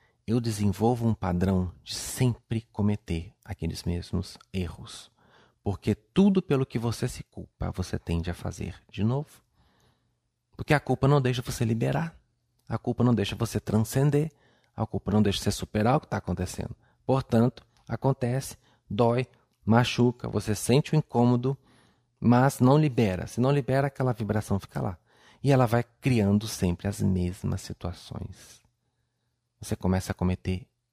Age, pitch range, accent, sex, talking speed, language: 40-59, 100-125 Hz, Brazilian, male, 145 wpm, Portuguese